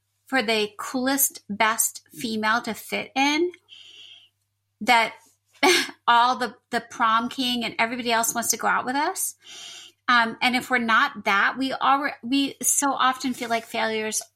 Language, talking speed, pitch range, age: English, 155 wpm, 220-270 Hz, 30-49